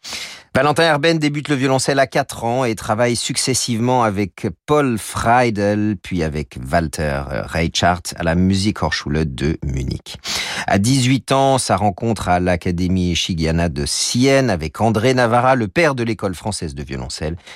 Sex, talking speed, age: male, 150 wpm, 40-59